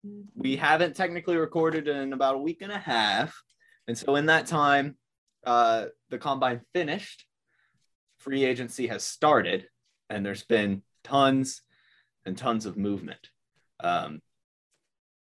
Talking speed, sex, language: 130 wpm, male, English